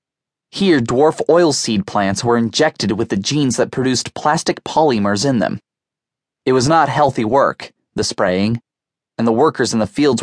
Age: 30-49